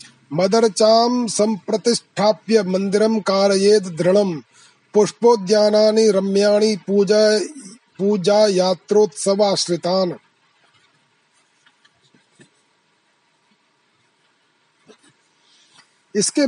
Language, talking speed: Hindi, 40 wpm